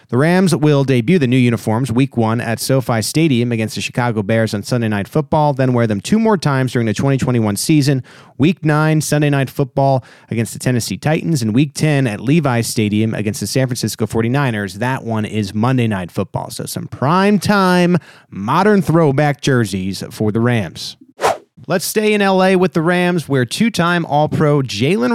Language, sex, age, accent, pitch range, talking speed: English, male, 30-49, American, 115-150 Hz, 185 wpm